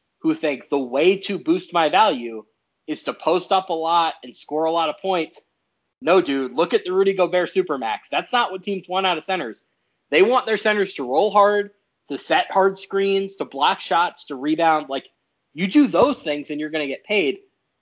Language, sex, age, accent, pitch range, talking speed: English, male, 30-49, American, 145-200 Hz, 210 wpm